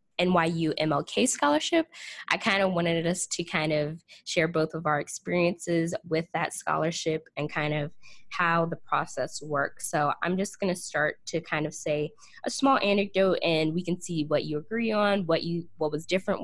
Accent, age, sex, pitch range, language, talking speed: American, 10-29, female, 155-180 Hz, English, 190 wpm